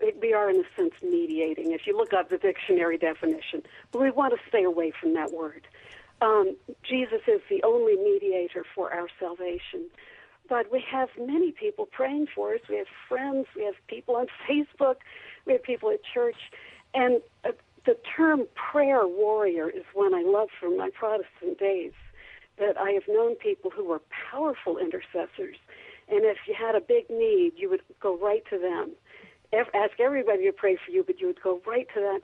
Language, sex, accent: English, female, American